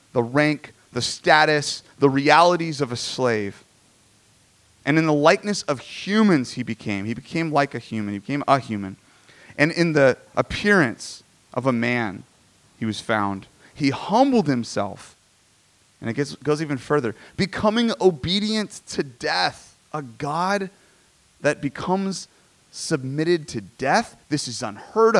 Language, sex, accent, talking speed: English, male, American, 140 wpm